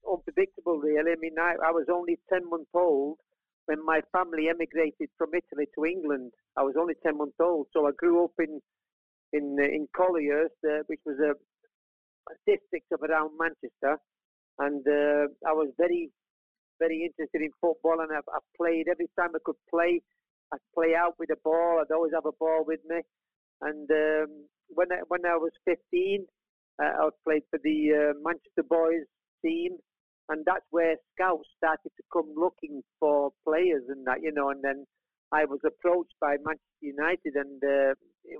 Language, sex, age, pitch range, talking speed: Finnish, male, 50-69, 150-170 Hz, 180 wpm